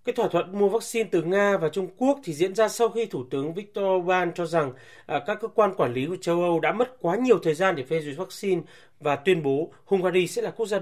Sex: male